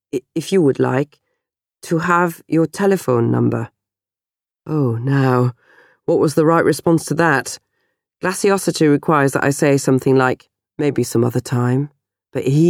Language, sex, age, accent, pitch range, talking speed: English, female, 40-59, British, 125-165 Hz, 145 wpm